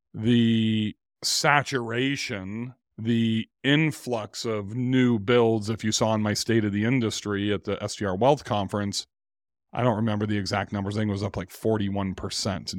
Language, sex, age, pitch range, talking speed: English, male, 40-59, 100-130 Hz, 160 wpm